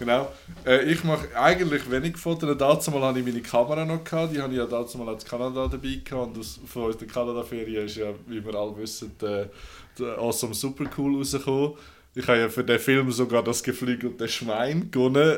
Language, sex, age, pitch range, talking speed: German, male, 20-39, 105-130 Hz, 190 wpm